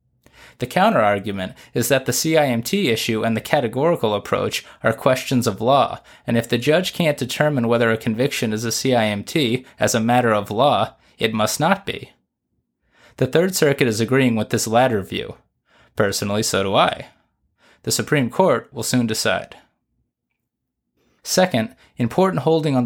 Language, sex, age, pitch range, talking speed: English, male, 20-39, 115-150 Hz, 155 wpm